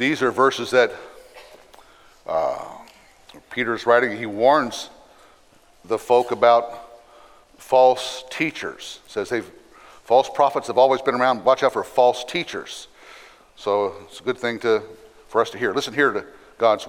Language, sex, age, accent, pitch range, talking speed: English, male, 60-79, American, 125-160 Hz, 155 wpm